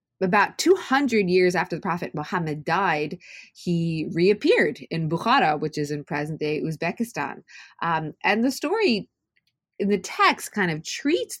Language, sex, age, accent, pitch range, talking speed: English, female, 30-49, American, 150-220 Hz, 140 wpm